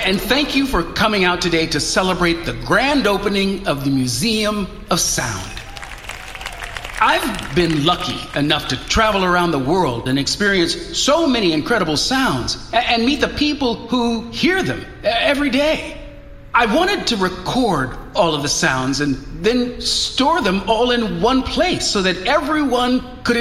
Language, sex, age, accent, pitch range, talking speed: English, male, 50-69, American, 175-250 Hz, 155 wpm